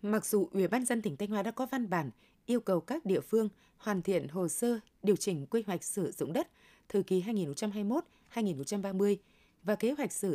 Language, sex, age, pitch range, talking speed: Vietnamese, female, 20-39, 180-230 Hz, 210 wpm